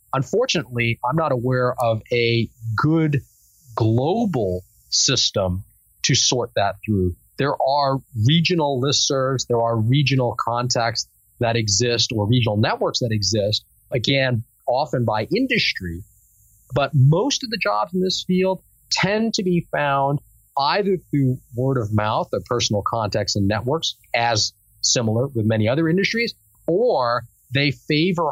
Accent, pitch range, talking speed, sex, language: American, 110-140 Hz, 135 wpm, male, English